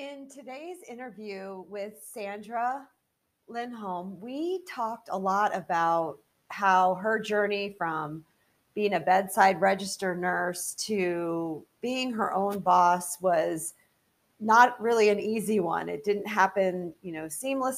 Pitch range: 180-220 Hz